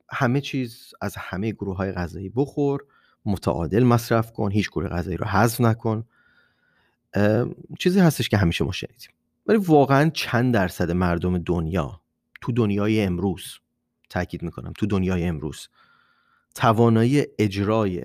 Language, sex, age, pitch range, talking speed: Persian, male, 30-49, 90-115 Hz, 130 wpm